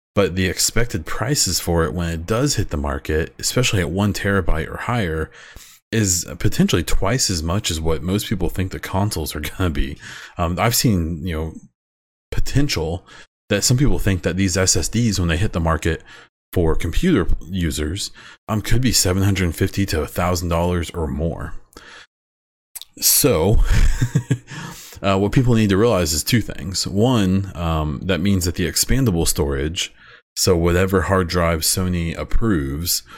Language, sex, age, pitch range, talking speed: English, male, 30-49, 80-100 Hz, 160 wpm